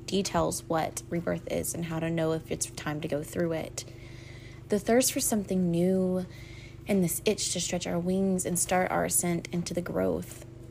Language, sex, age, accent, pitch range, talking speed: English, female, 20-39, American, 120-185 Hz, 190 wpm